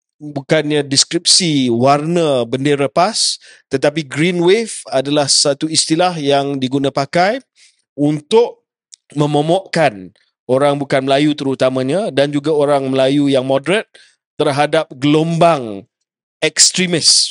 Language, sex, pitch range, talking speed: Malay, male, 140-170 Hz, 100 wpm